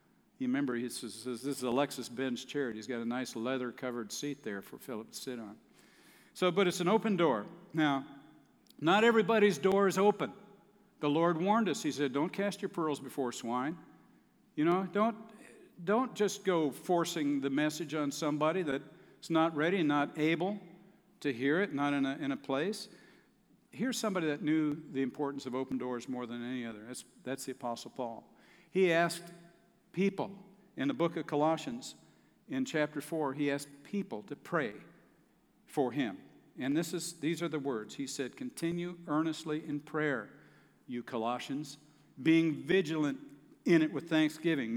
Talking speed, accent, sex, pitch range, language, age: 175 wpm, American, male, 140-195 Hz, English, 60-79